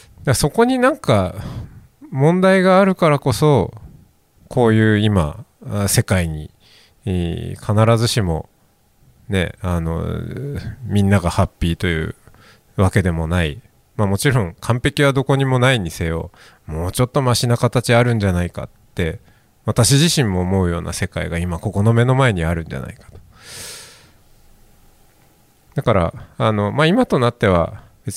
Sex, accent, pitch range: male, native, 95-140 Hz